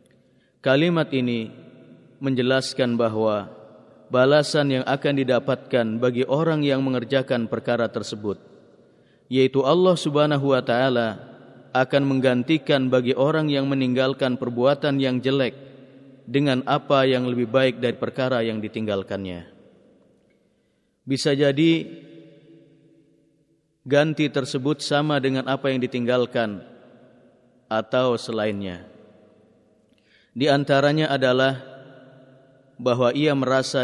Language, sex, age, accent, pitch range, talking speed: Indonesian, male, 30-49, native, 120-135 Hz, 95 wpm